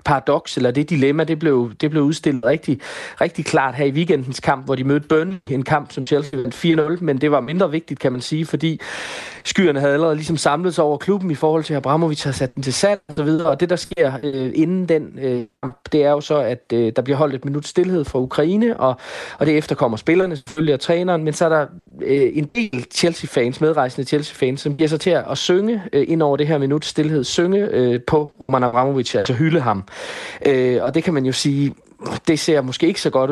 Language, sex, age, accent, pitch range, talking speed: Danish, male, 30-49, native, 125-155 Hz, 240 wpm